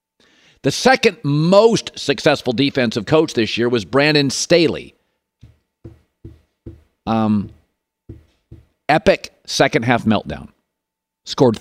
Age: 50-69